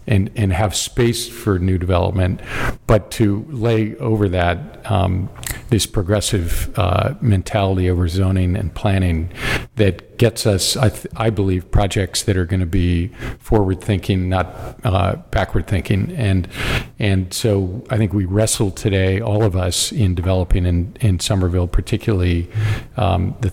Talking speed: 150 wpm